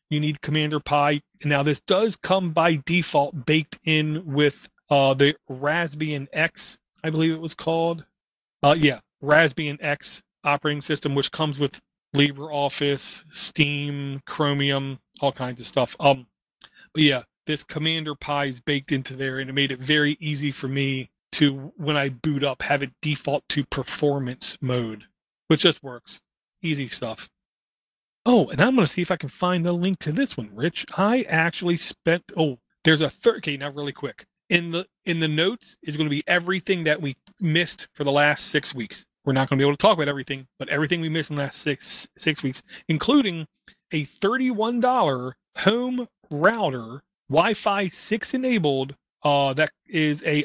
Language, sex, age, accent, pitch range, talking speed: English, male, 30-49, American, 140-165 Hz, 175 wpm